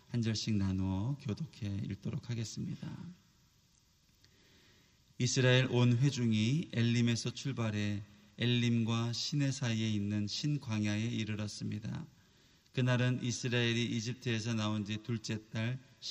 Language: Korean